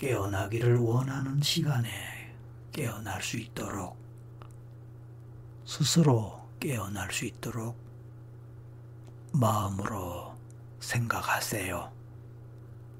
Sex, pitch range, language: male, 115-120 Hz, Korean